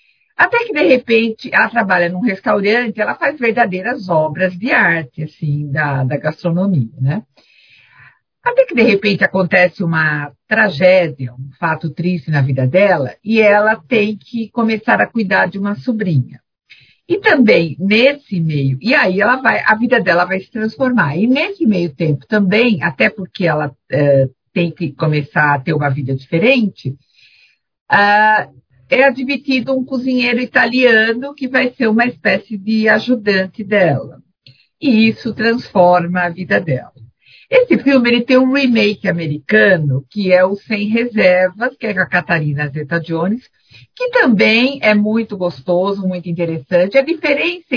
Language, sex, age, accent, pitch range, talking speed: Portuguese, female, 50-69, Brazilian, 165-230 Hz, 145 wpm